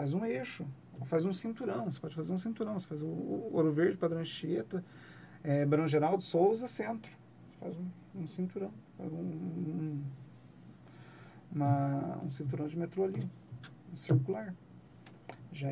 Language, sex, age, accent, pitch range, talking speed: Portuguese, male, 40-59, Brazilian, 145-185 Hz, 130 wpm